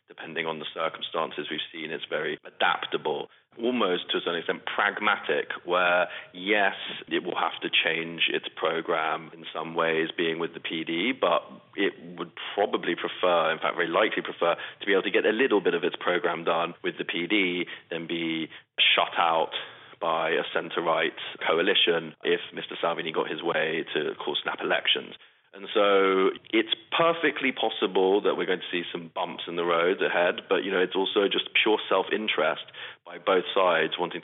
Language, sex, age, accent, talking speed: English, male, 30-49, British, 180 wpm